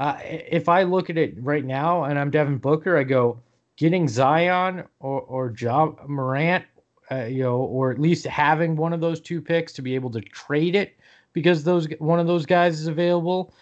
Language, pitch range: English, 125-155 Hz